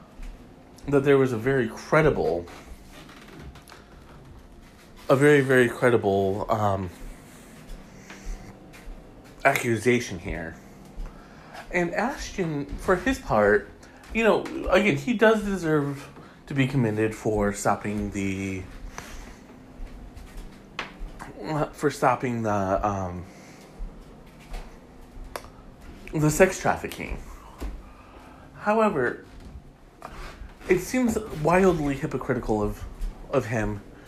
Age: 30-49